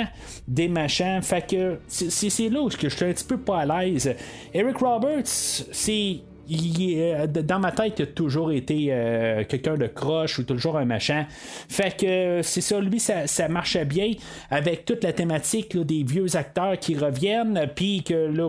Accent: Canadian